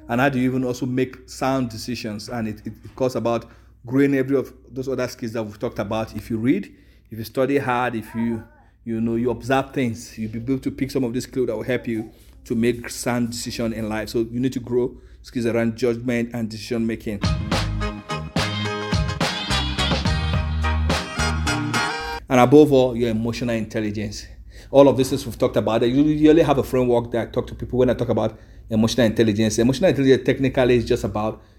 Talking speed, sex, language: 200 wpm, male, English